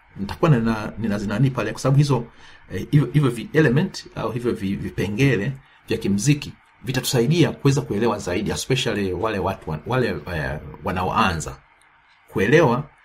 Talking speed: 125 wpm